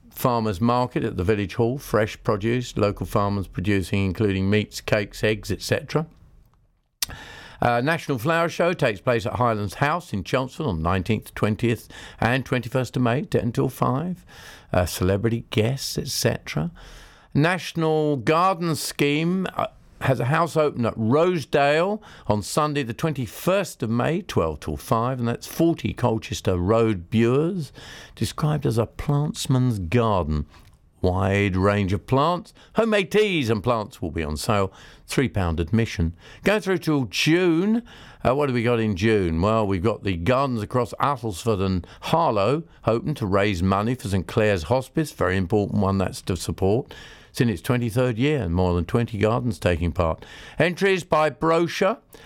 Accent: British